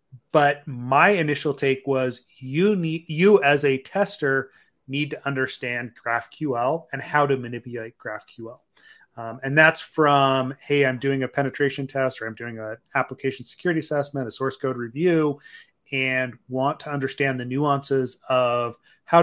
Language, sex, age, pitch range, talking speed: English, male, 30-49, 125-150 Hz, 155 wpm